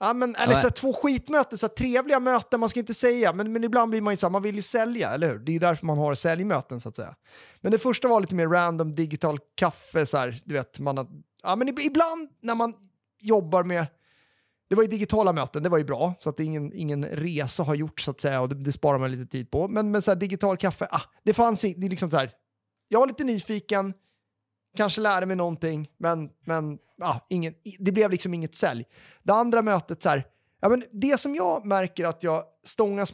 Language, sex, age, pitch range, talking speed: Swedish, male, 30-49, 155-220 Hz, 235 wpm